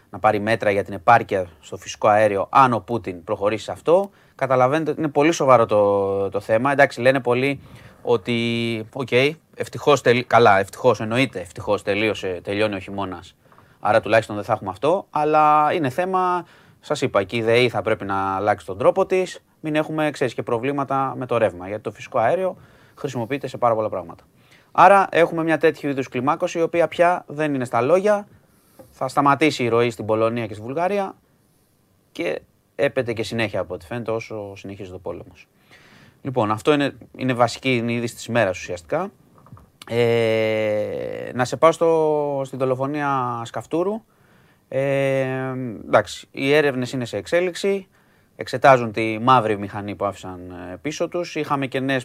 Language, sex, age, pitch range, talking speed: Greek, male, 30-49, 110-145 Hz, 165 wpm